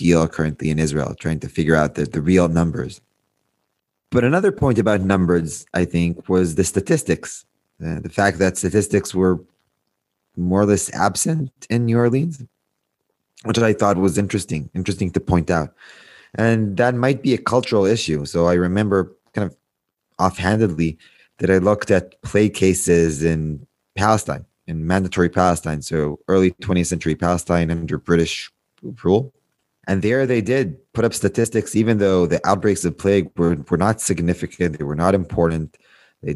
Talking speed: 160 wpm